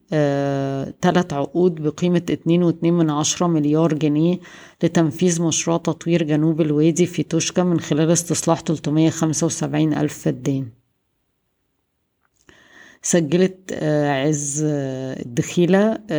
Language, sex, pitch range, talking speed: Arabic, female, 150-165 Hz, 90 wpm